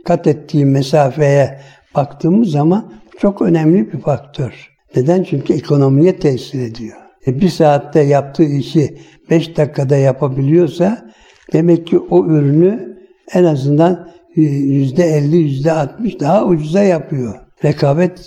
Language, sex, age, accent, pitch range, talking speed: Turkish, male, 60-79, native, 145-175 Hz, 120 wpm